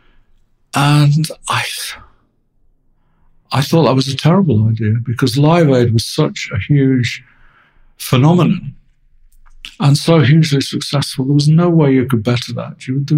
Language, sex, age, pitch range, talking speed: English, male, 60-79, 120-150 Hz, 140 wpm